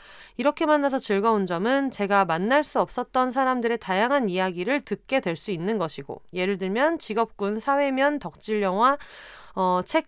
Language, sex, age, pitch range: Korean, female, 30-49, 195-285 Hz